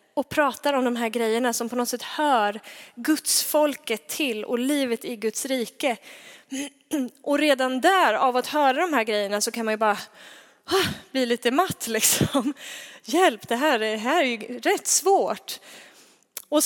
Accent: native